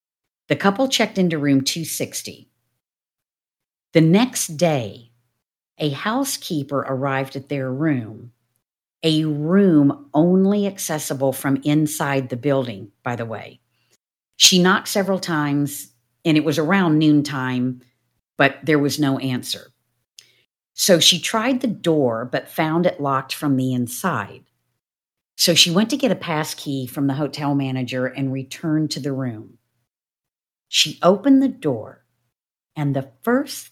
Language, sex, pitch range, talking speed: English, female, 130-175 Hz, 135 wpm